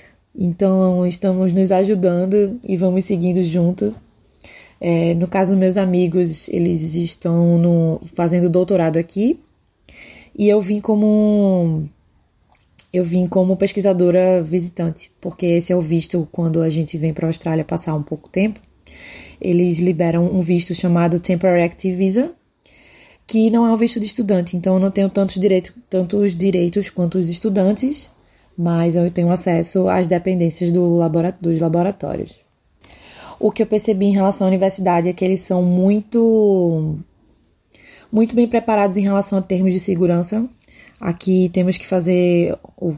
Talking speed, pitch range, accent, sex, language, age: 145 wpm, 175-195 Hz, Brazilian, female, Portuguese, 20-39